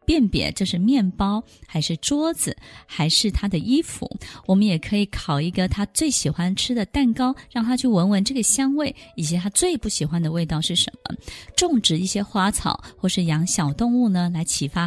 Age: 20-39